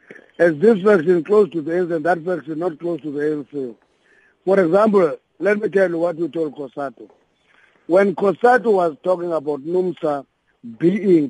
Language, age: English, 50-69